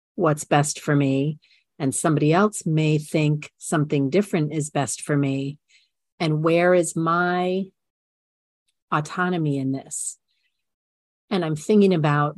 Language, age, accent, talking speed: English, 40-59, American, 125 wpm